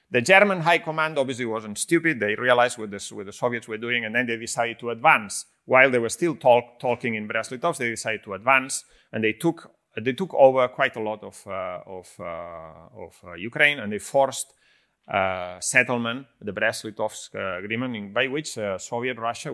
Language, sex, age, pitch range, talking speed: English, male, 30-49, 105-130 Hz, 195 wpm